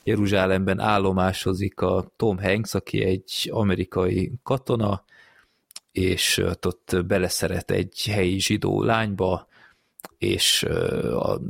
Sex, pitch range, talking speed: male, 90-105 Hz, 95 wpm